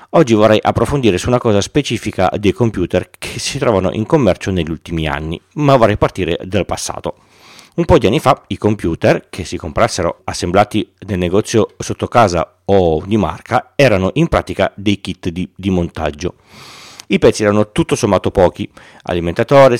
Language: Italian